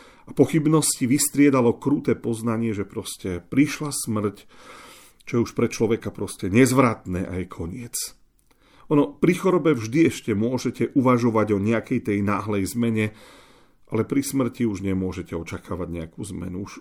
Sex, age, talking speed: male, 40-59, 140 wpm